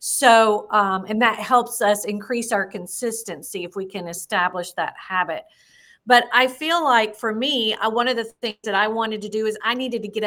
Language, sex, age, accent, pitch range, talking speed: English, female, 50-69, American, 200-235 Hz, 210 wpm